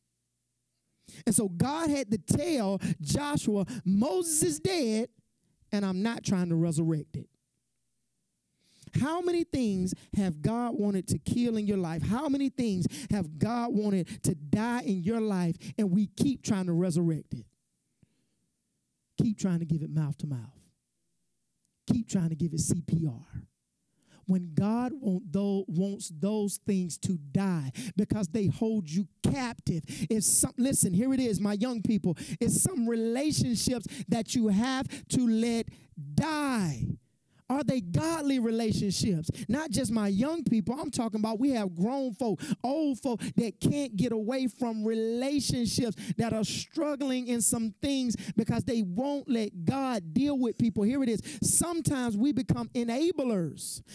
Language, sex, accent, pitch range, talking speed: English, male, American, 180-245 Hz, 145 wpm